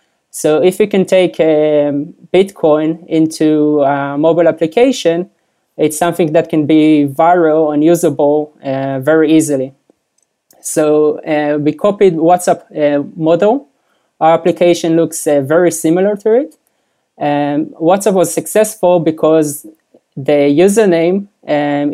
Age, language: 20-39, English